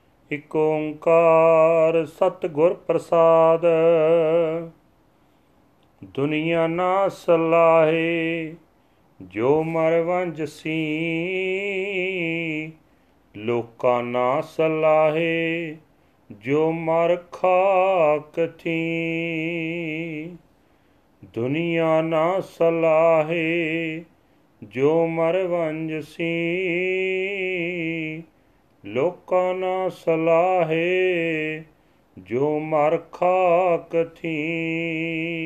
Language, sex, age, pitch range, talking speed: Punjabi, male, 40-59, 155-170 Hz, 50 wpm